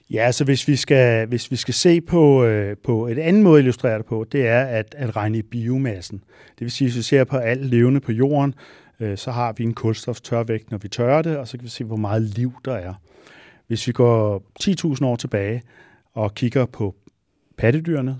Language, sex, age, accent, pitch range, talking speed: Danish, male, 40-59, native, 115-150 Hz, 225 wpm